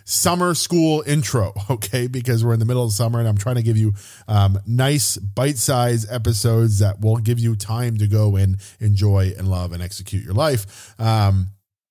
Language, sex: English, male